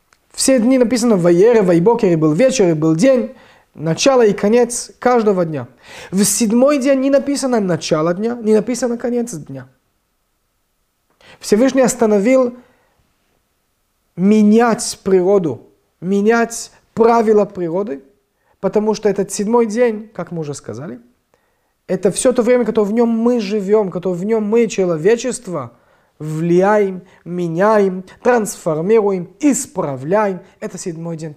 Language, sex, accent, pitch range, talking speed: Russian, male, native, 170-230 Hz, 120 wpm